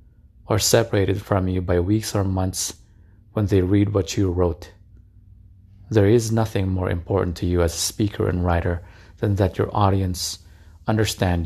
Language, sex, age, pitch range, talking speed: English, male, 30-49, 90-105 Hz, 160 wpm